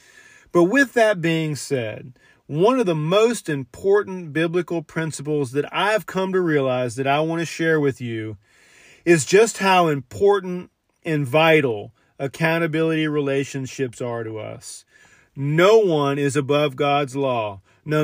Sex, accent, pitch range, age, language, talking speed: male, American, 145-180 Hz, 40-59, English, 140 wpm